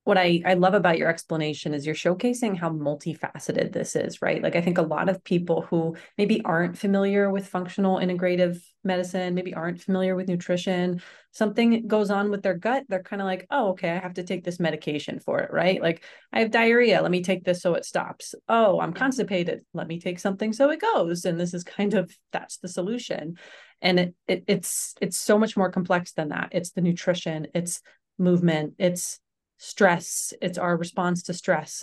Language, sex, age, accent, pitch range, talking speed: English, female, 30-49, American, 170-195 Hz, 205 wpm